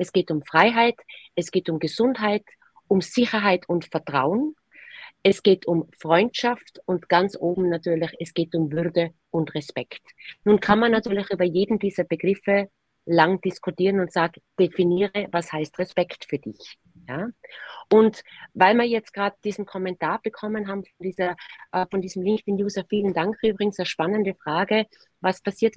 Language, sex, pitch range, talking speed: English, female, 170-210 Hz, 150 wpm